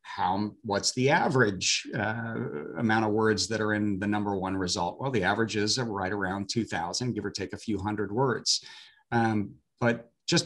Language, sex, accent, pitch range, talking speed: English, male, American, 105-130 Hz, 185 wpm